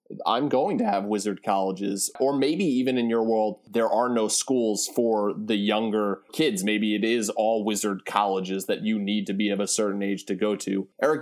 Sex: male